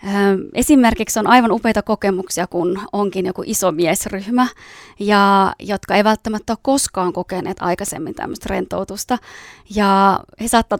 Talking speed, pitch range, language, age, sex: 120 wpm, 195-235 Hz, Finnish, 20-39, female